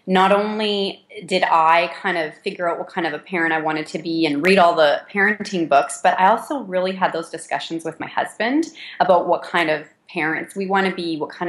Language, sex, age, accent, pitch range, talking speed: English, female, 30-49, American, 160-195 Hz, 230 wpm